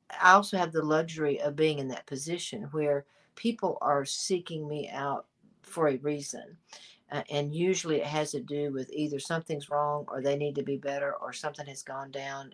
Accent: American